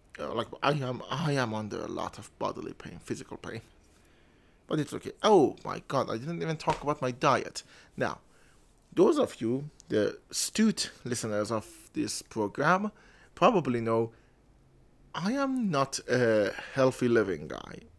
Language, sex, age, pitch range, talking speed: English, male, 30-49, 110-145 Hz, 155 wpm